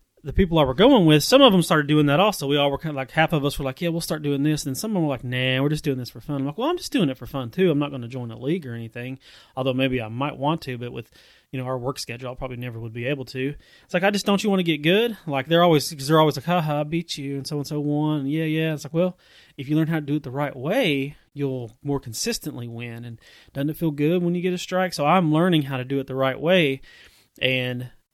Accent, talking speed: American, 315 wpm